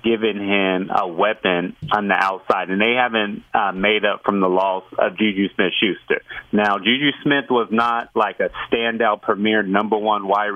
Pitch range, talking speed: 95-115 Hz, 175 wpm